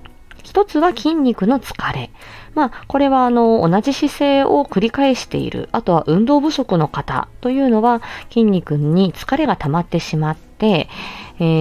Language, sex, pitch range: Japanese, female, 150-250 Hz